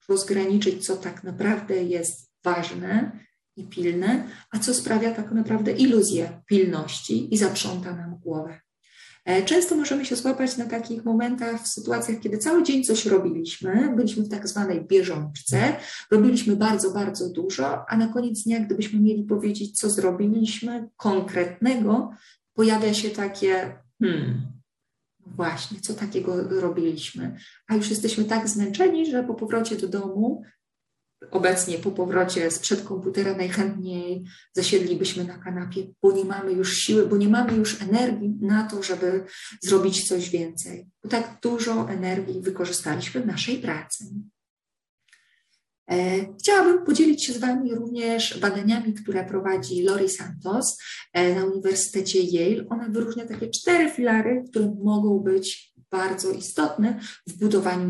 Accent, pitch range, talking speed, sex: native, 185-225 Hz, 135 wpm, female